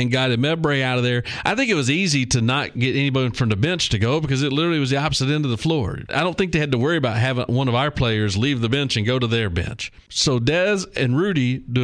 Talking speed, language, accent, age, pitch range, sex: 285 wpm, English, American, 40-59, 115-145 Hz, male